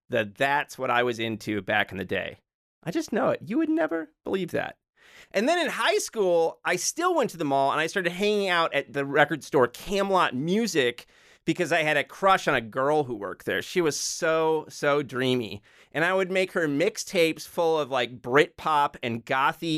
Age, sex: 30-49, male